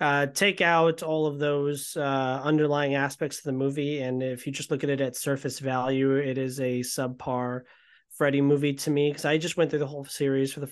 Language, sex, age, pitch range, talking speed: English, male, 30-49, 135-160 Hz, 225 wpm